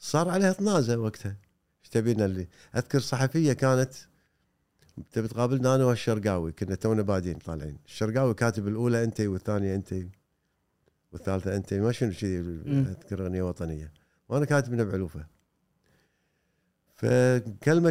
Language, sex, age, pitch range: Arabic, male, 50-69, 95-135 Hz